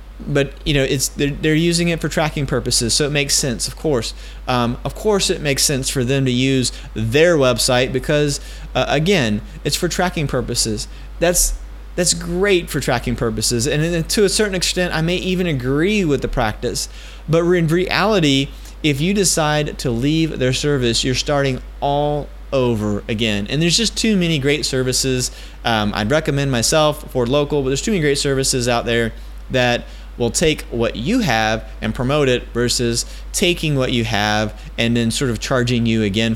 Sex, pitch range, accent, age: male, 115-150 Hz, American, 30-49